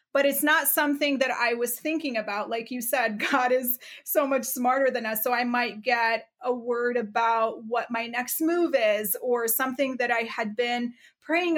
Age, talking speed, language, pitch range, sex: 30-49, 195 wpm, English, 225-265 Hz, female